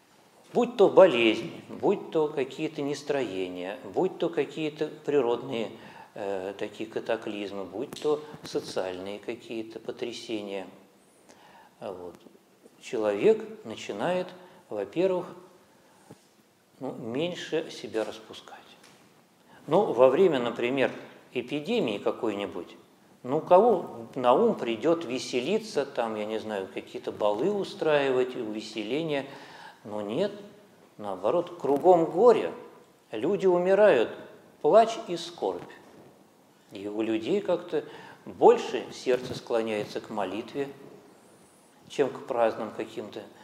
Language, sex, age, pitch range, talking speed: Russian, male, 50-69, 115-180 Hz, 100 wpm